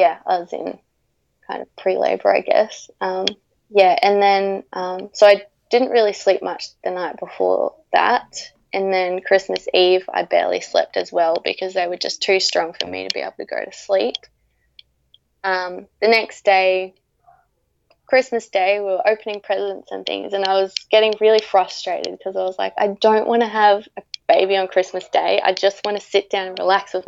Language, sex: English, female